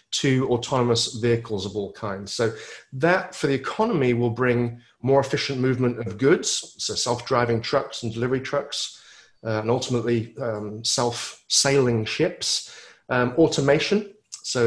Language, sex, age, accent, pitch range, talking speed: English, male, 30-49, British, 115-140 Hz, 135 wpm